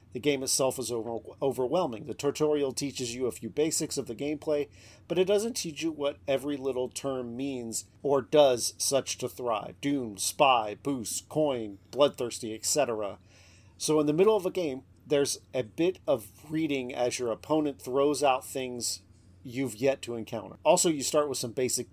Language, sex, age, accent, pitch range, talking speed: English, male, 40-59, American, 115-150 Hz, 175 wpm